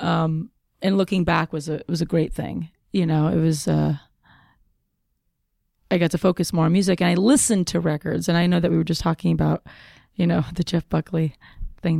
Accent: American